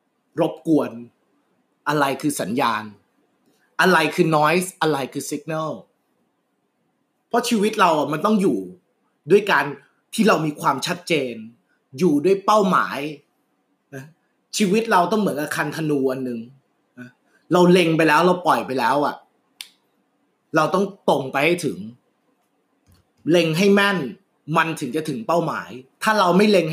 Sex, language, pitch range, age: male, Thai, 150-195 Hz, 20-39